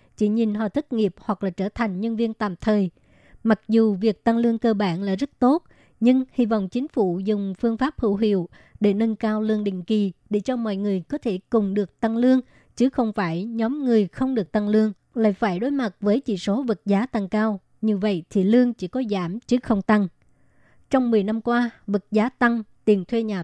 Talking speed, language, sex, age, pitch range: 230 wpm, Vietnamese, male, 20-39, 205-235 Hz